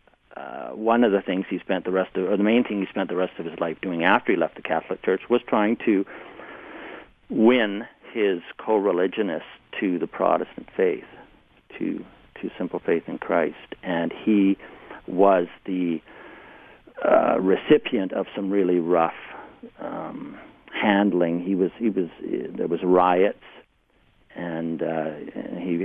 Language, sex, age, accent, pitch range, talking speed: English, male, 50-69, American, 85-100 Hz, 155 wpm